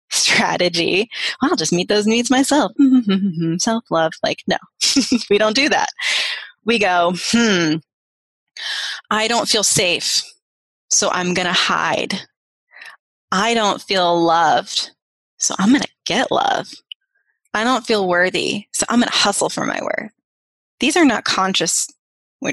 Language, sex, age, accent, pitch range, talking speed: English, female, 20-39, American, 185-250 Hz, 140 wpm